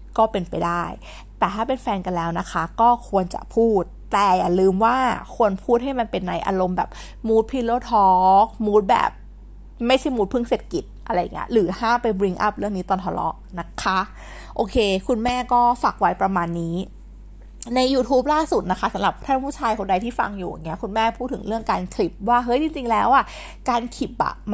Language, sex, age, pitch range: Thai, female, 20-39, 190-245 Hz